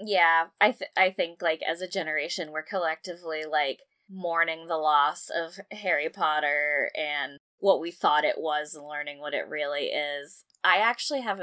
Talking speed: 175 wpm